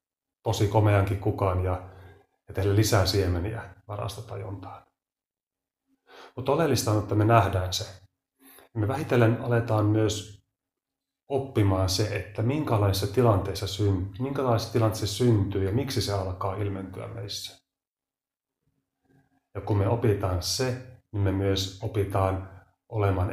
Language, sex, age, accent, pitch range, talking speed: Finnish, male, 30-49, native, 95-110 Hz, 110 wpm